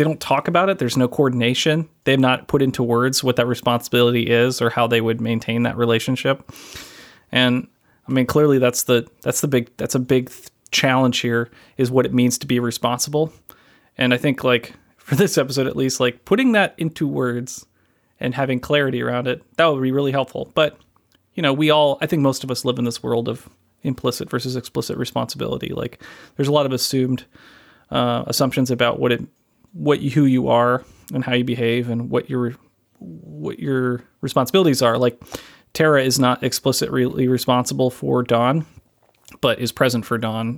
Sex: male